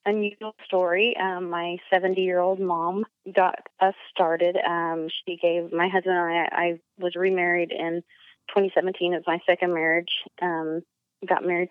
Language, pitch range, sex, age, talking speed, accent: English, 165-180 Hz, female, 30-49, 160 wpm, American